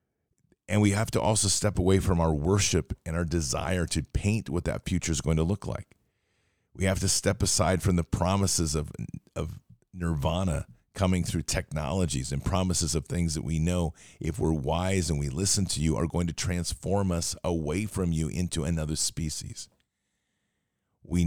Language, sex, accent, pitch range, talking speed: English, male, American, 80-95 Hz, 180 wpm